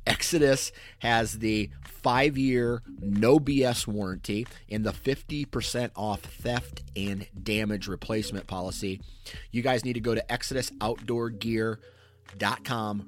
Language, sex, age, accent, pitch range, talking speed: English, male, 30-49, American, 95-115 Hz, 110 wpm